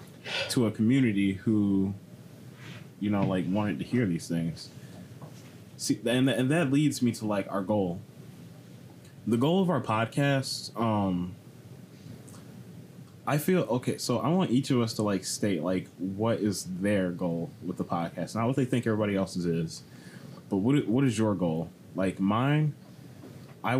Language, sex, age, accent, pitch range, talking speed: English, male, 20-39, American, 95-125 Hz, 160 wpm